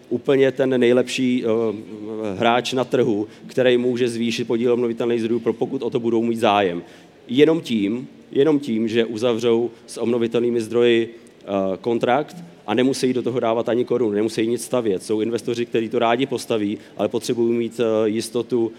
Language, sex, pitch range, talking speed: Czech, male, 110-125 Hz, 165 wpm